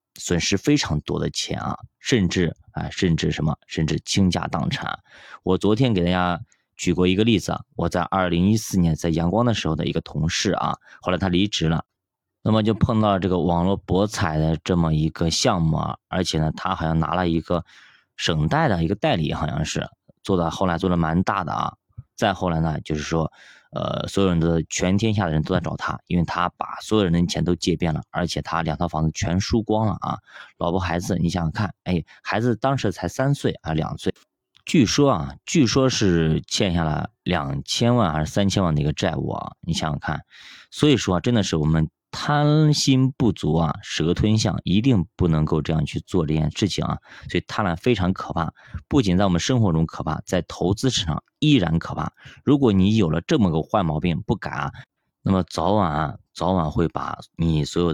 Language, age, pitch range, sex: Chinese, 20-39, 80-105 Hz, male